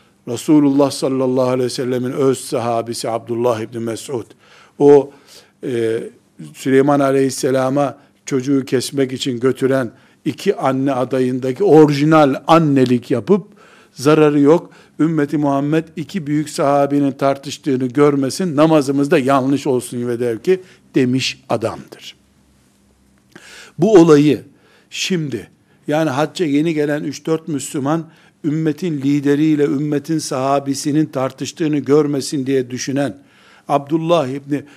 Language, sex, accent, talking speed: Turkish, male, native, 105 wpm